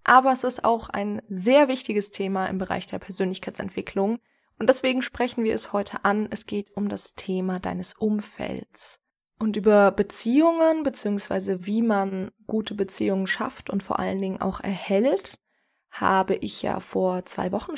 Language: German